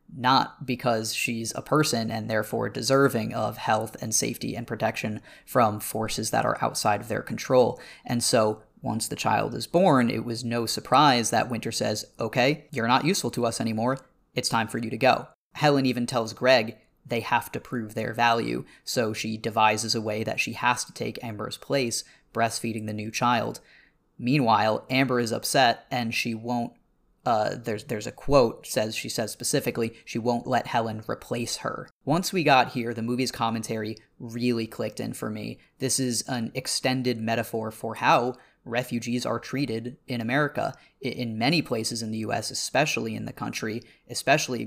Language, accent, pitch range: English, American, 110-125 Hz